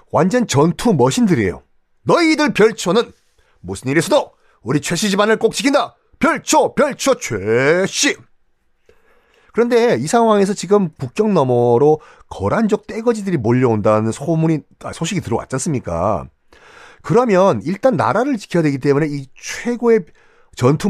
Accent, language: native, Korean